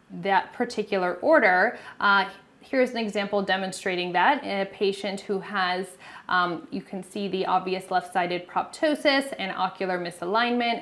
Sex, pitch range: female, 185-230 Hz